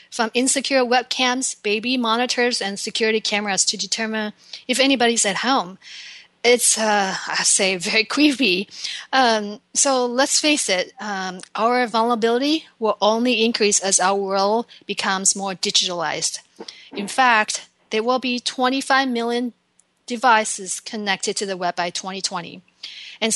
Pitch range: 200-245 Hz